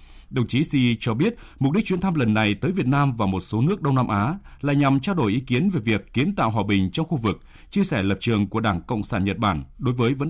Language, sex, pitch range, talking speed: Vietnamese, male, 95-145 Hz, 285 wpm